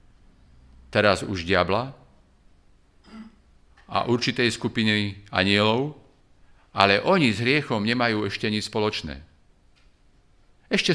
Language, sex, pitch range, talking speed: Slovak, male, 85-110 Hz, 90 wpm